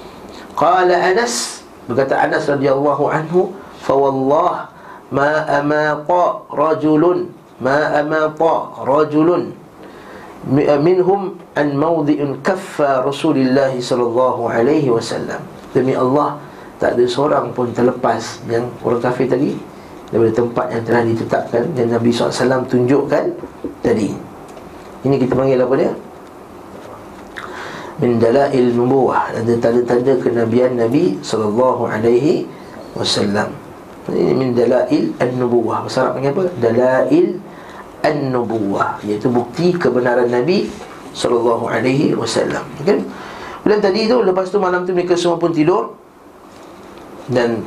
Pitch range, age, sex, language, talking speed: 120-155 Hz, 50-69, male, Malay, 105 wpm